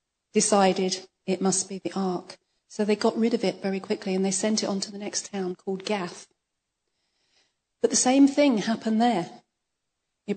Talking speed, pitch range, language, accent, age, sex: 185 wpm, 190-235 Hz, English, British, 40-59, female